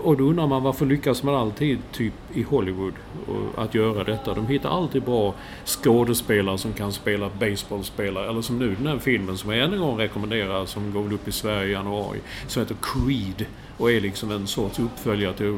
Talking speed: 195 wpm